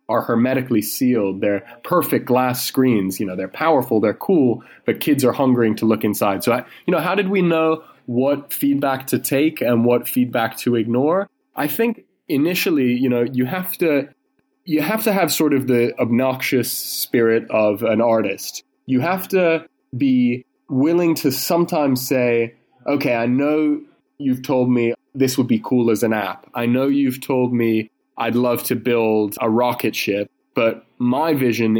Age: 20-39